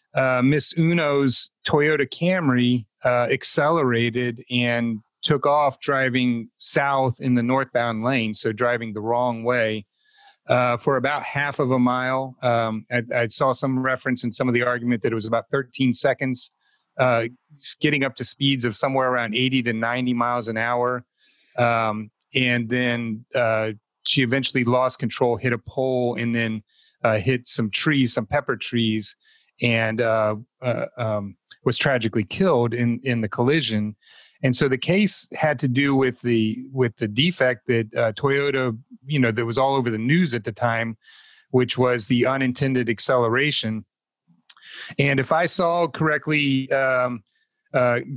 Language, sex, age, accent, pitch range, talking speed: English, male, 40-59, American, 120-140 Hz, 160 wpm